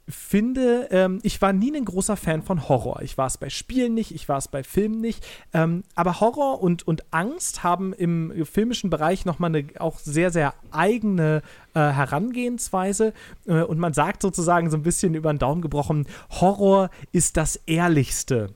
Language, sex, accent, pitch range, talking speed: German, male, German, 145-185 Hz, 180 wpm